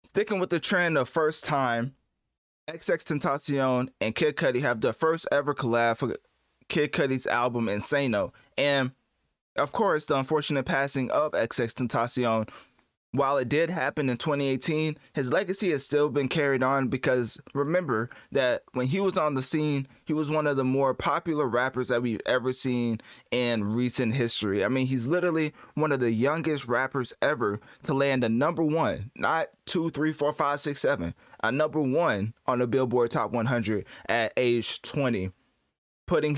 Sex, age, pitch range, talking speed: male, 20-39, 120-150 Hz, 170 wpm